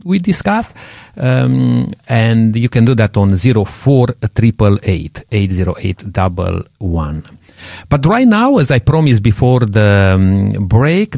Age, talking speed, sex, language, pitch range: 50-69, 150 wpm, male, English, 105-135 Hz